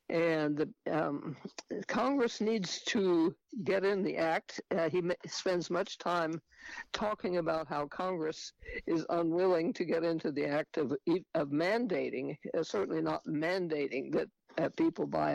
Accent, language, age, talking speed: American, English, 60-79, 140 wpm